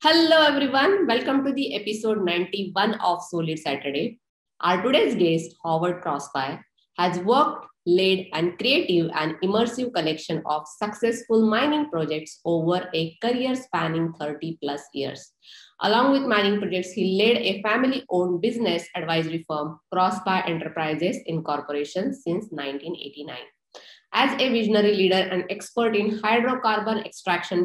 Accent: Indian